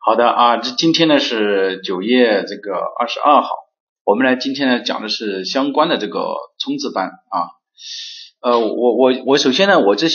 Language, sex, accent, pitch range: Chinese, male, native, 125-195 Hz